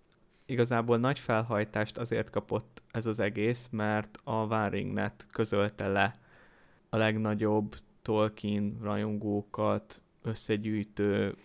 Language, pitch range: Hungarian, 105-120 Hz